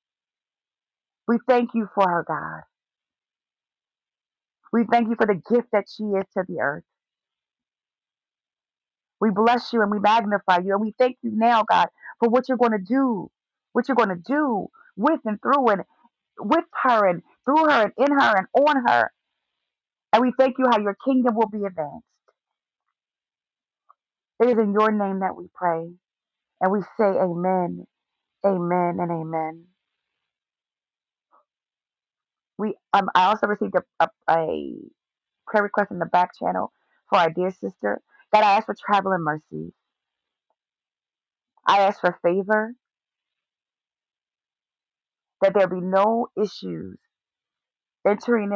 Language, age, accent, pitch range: English, 40-59, American, 185-235 Hz